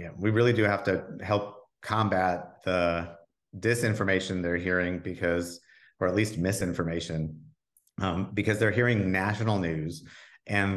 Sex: male